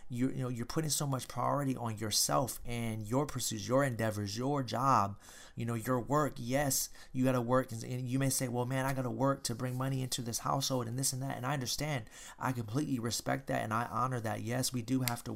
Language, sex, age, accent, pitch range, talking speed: English, male, 30-49, American, 115-130 Hz, 240 wpm